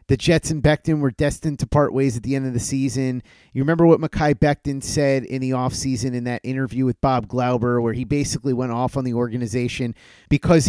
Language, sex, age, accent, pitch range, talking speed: English, male, 30-49, American, 130-165 Hz, 220 wpm